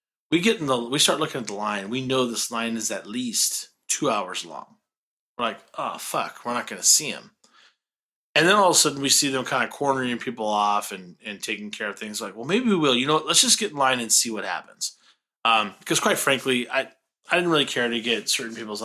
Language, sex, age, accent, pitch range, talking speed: English, male, 30-49, American, 105-135 Hz, 255 wpm